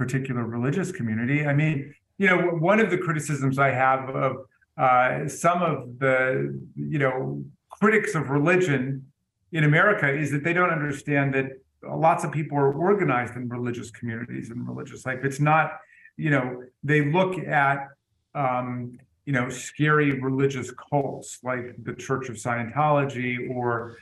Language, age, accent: English, 40-59, American